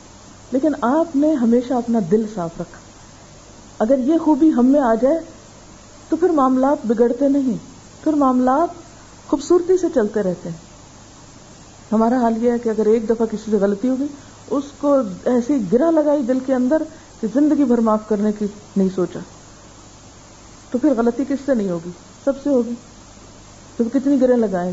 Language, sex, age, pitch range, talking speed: Urdu, female, 50-69, 185-275 Hz, 165 wpm